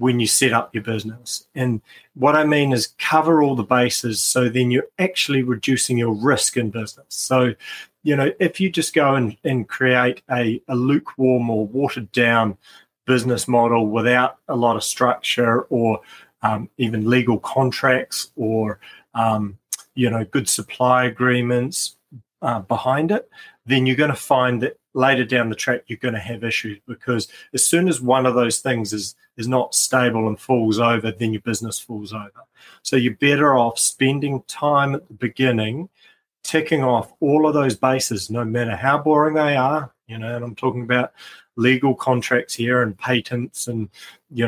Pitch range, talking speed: 115-135 Hz, 175 wpm